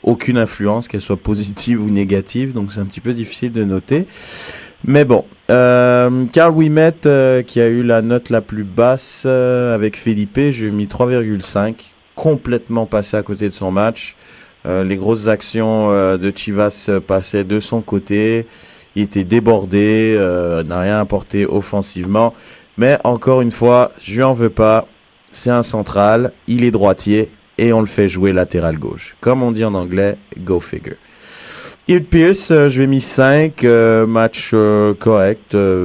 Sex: male